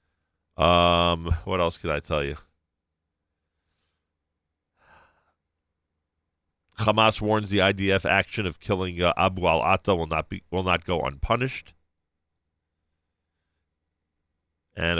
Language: English